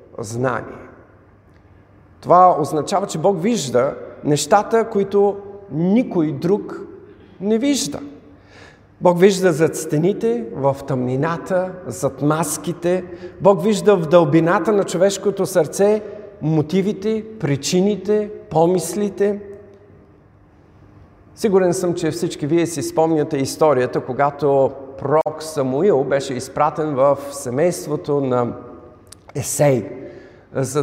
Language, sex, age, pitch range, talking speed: Bulgarian, male, 50-69, 130-195 Hz, 95 wpm